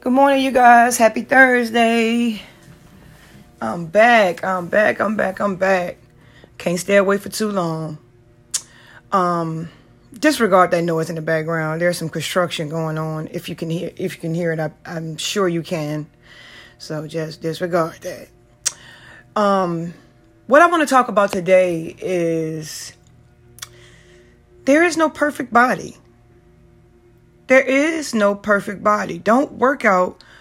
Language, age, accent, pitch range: English, 30-49, American, 165-235 Hz